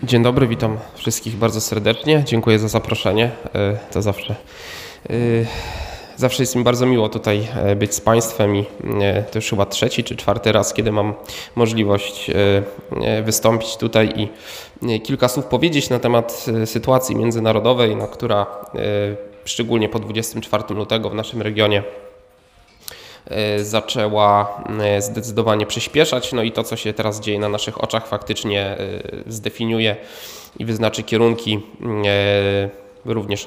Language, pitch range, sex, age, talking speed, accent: Polish, 105-115 Hz, male, 20-39, 125 wpm, native